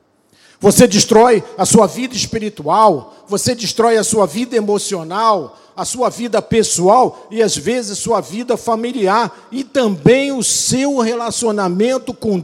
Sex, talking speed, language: male, 135 wpm, Portuguese